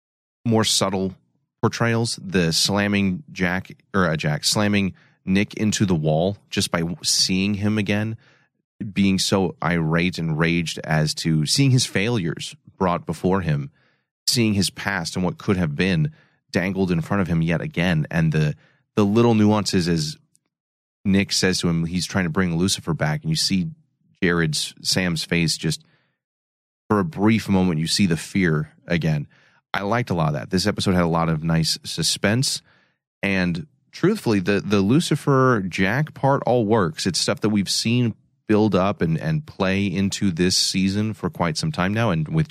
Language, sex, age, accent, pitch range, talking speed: English, male, 30-49, American, 85-120 Hz, 170 wpm